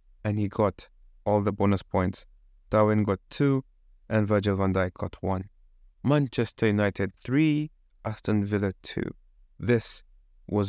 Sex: male